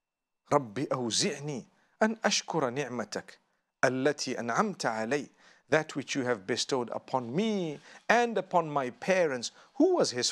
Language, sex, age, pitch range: English, male, 50-69, 125-175 Hz